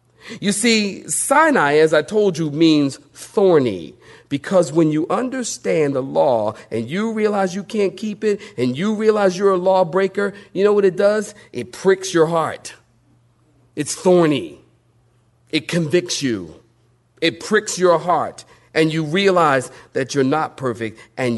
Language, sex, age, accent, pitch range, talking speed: English, male, 40-59, American, 115-170 Hz, 150 wpm